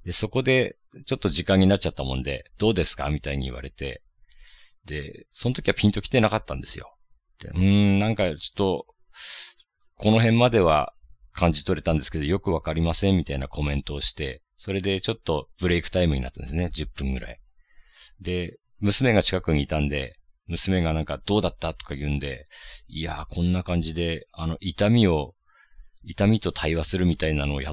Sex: male